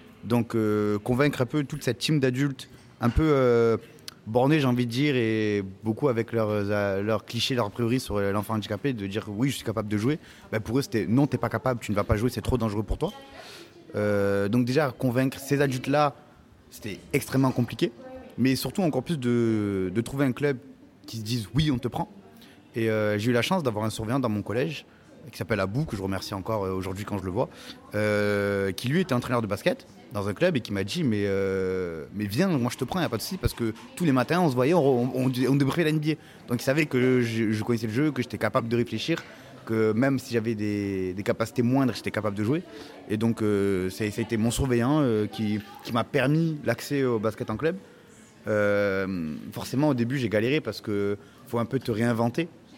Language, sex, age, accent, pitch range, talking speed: French, male, 30-49, French, 105-135 Hz, 230 wpm